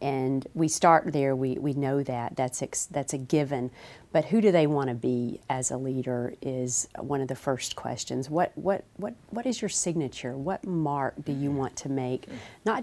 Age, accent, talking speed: 40-59, American, 205 wpm